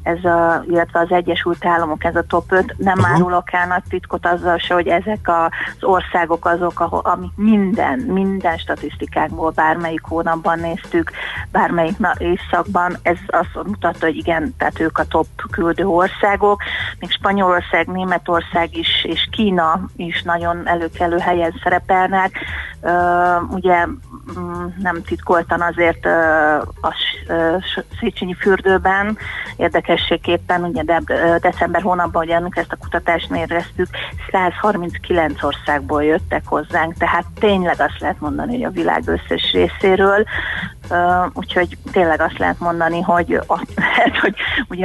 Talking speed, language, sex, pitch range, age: 125 wpm, Hungarian, female, 170-185 Hz, 30-49